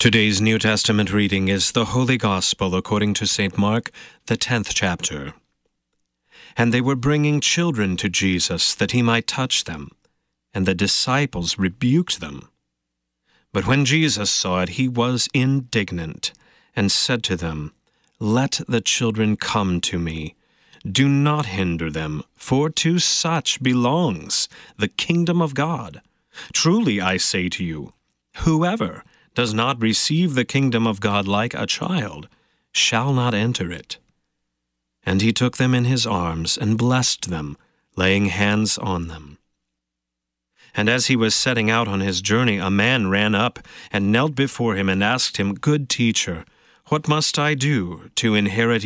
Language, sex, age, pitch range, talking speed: English, male, 30-49, 95-130 Hz, 150 wpm